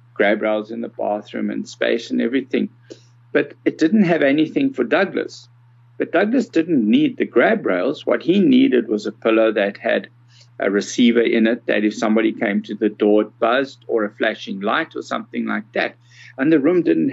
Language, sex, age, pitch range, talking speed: English, male, 60-79, 115-145 Hz, 195 wpm